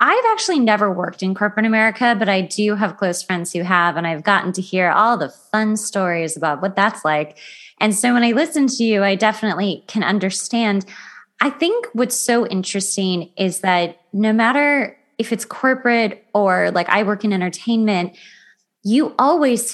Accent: American